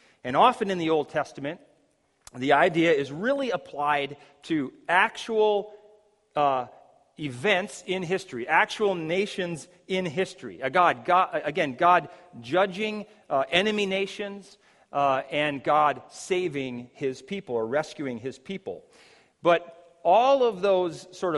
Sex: male